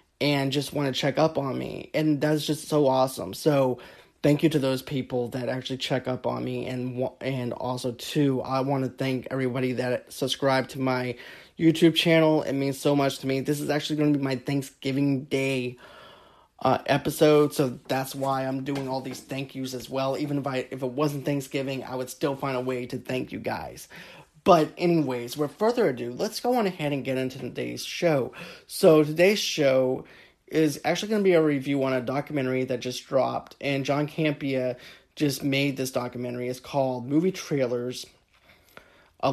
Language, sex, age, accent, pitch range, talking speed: English, male, 20-39, American, 130-150 Hz, 195 wpm